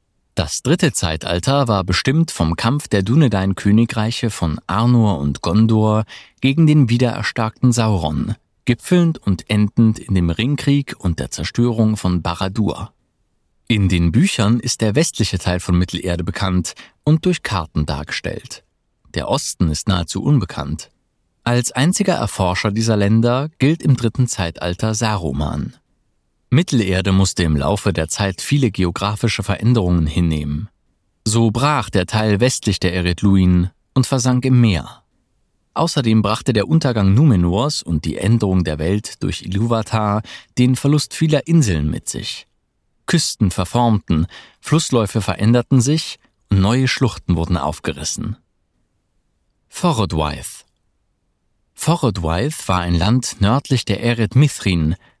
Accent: German